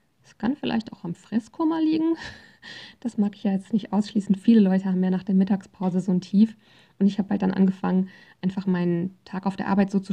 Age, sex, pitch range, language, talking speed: 20-39, female, 185-220 Hz, German, 225 wpm